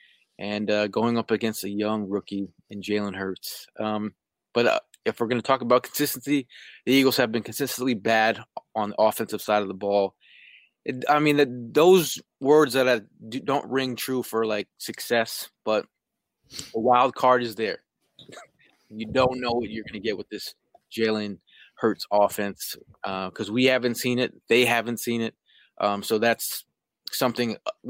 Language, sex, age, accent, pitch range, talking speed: English, male, 20-39, American, 105-125 Hz, 180 wpm